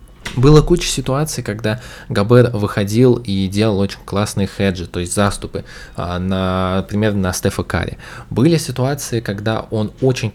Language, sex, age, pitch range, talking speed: Russian, male, 20-39, 100-125 Hz, 135 wpm